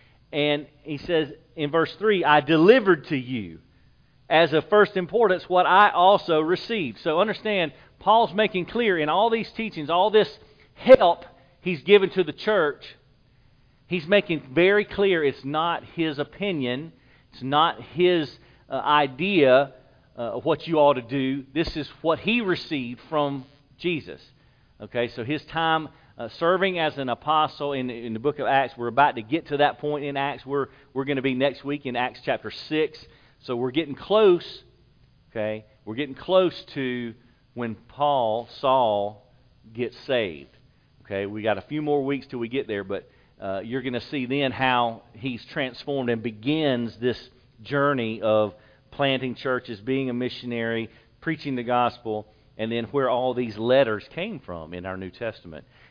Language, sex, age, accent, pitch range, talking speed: English, male, 40-59, American, 120-160 Hz, 170 wpm